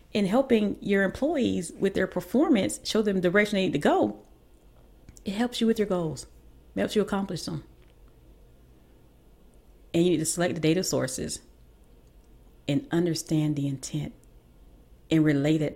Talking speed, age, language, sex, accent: 155 wpm, 30-49, English, female, American